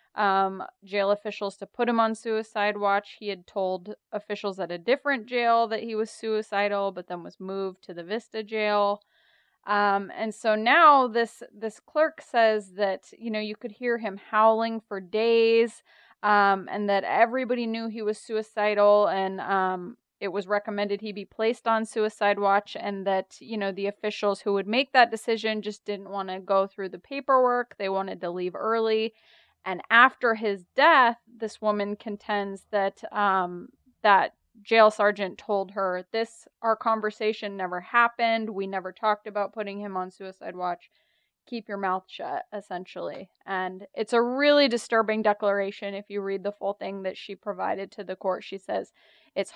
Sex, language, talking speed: female, English, 175 wpm